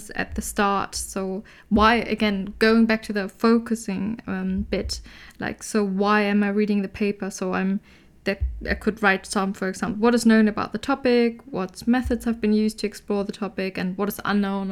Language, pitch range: English, 200-220 Hz